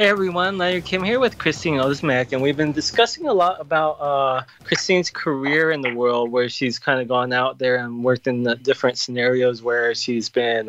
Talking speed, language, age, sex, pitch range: 210 wpm, English, 20-39, male, 125-155 Hz